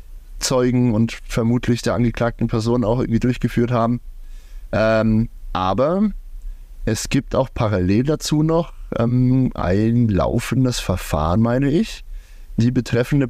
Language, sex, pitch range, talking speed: German, male, 110-130 Hz, 115 wpm